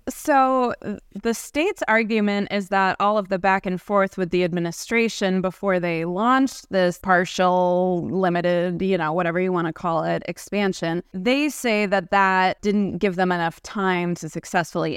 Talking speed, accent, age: 165 wpm, American, 20-39